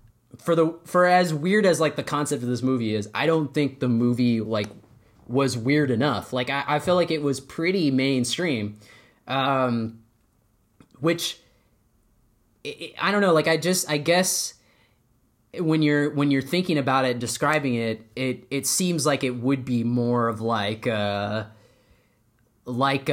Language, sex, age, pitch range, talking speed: English, male, 20-39, 115-150 Hz, 170 wpm